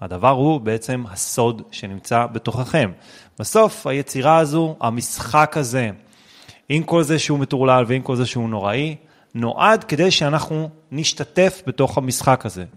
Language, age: Hebrew, 30-49